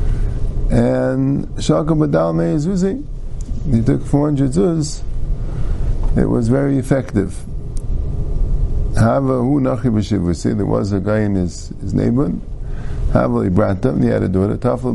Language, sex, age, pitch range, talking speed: English, male, 50-69, 95-130 Hz, 95 wpm